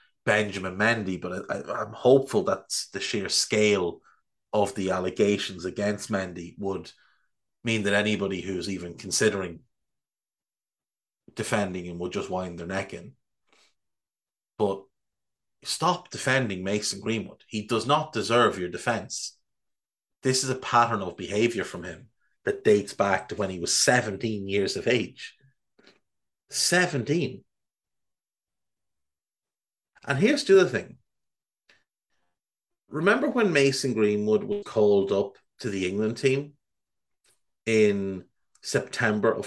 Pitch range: 100-135 Hz